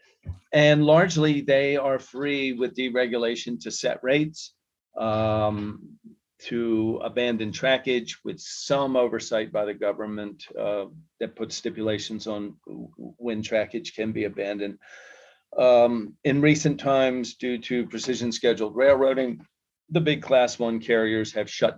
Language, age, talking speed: English, 40-59, 125 wpm